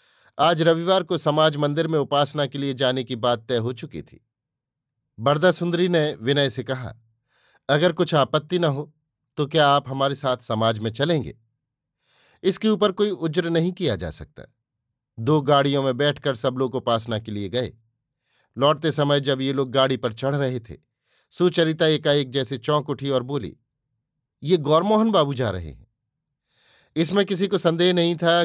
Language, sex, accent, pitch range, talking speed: Hindi, male, native, 125-155 Hz, 175 wpm